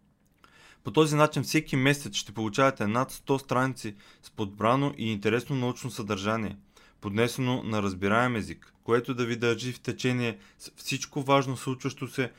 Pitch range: 105-135 Hz